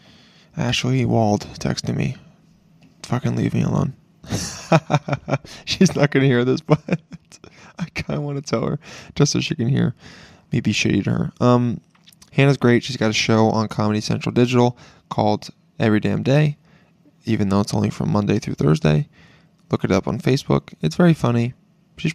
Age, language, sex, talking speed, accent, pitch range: 20-39, English, male, 175 wpm, American, 115-175 Hz